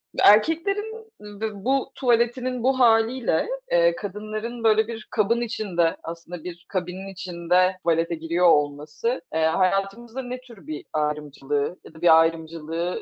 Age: 30-49